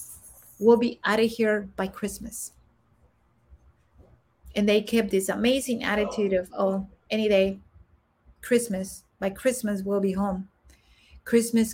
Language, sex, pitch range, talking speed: English, female, 180-215 Hz, 125 wpm